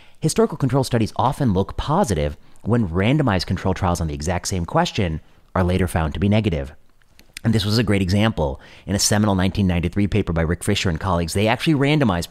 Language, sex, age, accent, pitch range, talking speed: English, male, 30-49, American, 85-120 Hz, 195 wpm